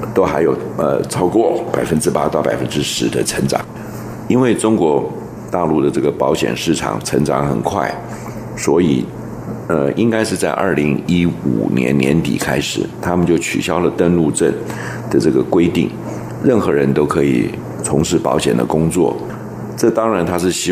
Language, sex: Chinese, male